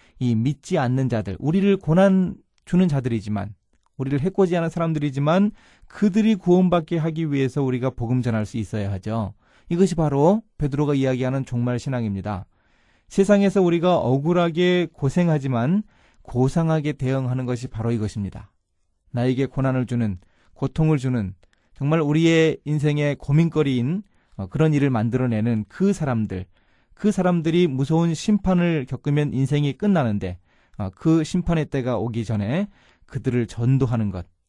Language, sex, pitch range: Korean, male, 115-165 Hz